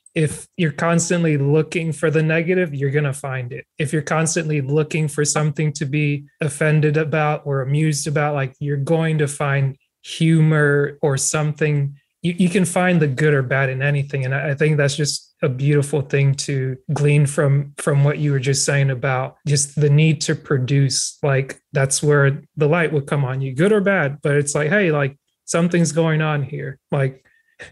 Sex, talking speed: male, 190 wpm